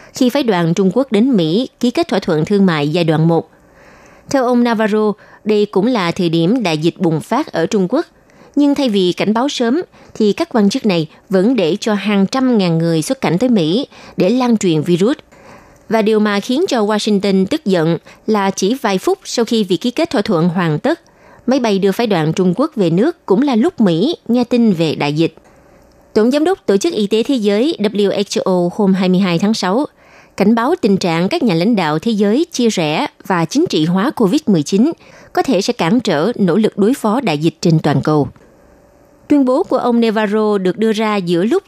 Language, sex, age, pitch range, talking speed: Vietnamese, female, 20-39, 180-245 Hz, 215 wpm